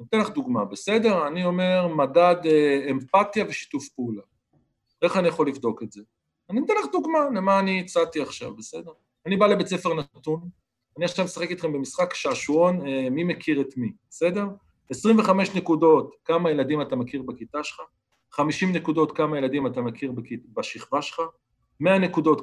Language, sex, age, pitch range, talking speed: Hebrew, male, 40-59, 140-190 Hz, 165 wpm